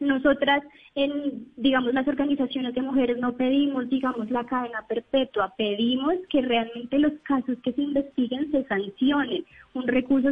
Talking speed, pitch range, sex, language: 140 wpm, 240-275 Hz, male, Spanish